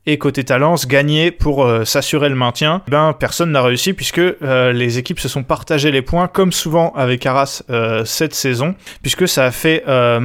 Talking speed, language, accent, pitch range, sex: 200 wpm, French, French, 130-160 Hz, male